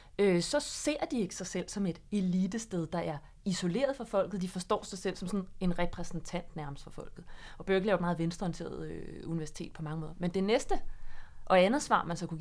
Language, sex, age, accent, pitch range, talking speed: Danish, female, 30-49, native, 170-205 Hz, 220 wpm